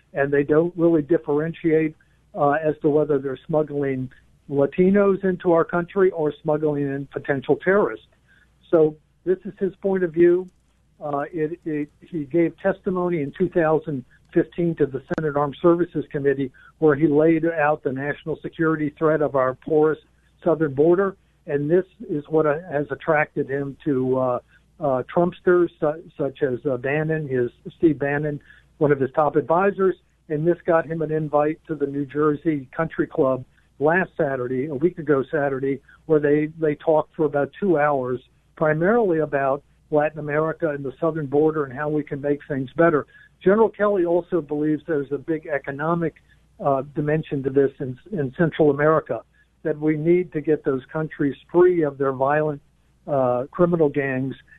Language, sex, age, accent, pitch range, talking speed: English, male, 60-79, American, 145-165 Hz, 165 wpm